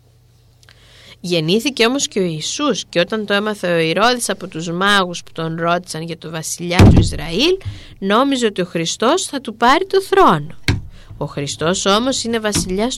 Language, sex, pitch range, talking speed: Greek, female, 155-230 Hz, 165 wpm